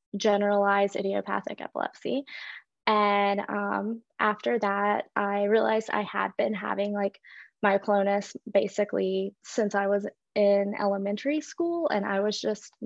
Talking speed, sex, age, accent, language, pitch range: 120 wpm, female, 20-39, American, English, 200-215 Hz